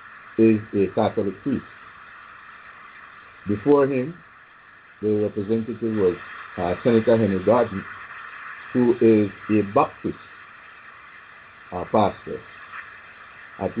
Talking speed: 85 wpm